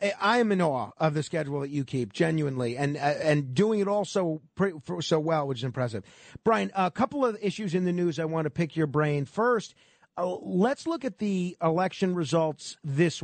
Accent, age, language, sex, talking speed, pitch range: American, 40-59, English, male, 200 wpm, 150-195 Hz